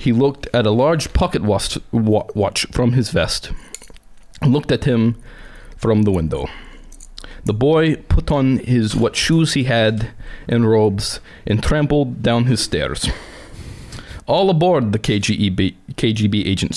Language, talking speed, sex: English, 135 wpm, male